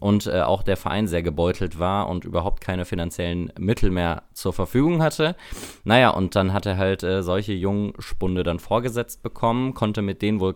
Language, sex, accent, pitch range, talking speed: German, male, German, 90-115 Hz, 190 wpm